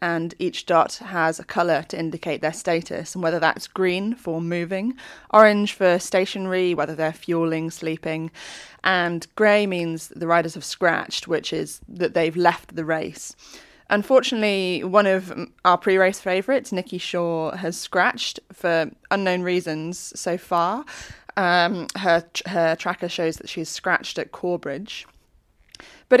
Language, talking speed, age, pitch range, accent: English, 145 wpm, 20-39, 165-205 Hz, British